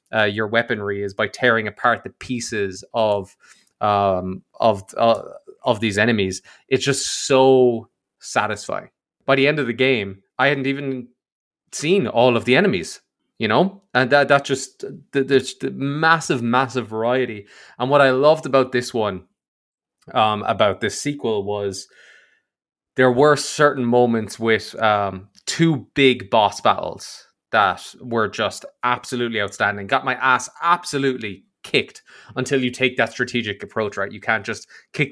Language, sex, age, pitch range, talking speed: English, male, 20-39, 105-130 Hz, 150 wpm